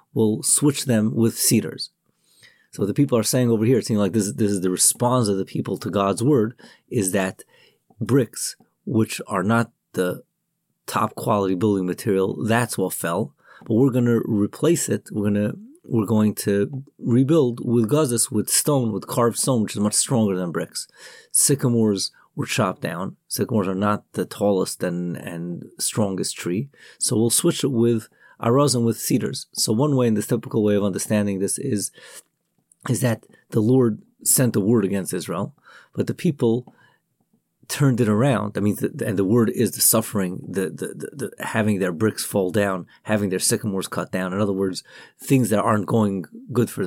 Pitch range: 100-125 Hz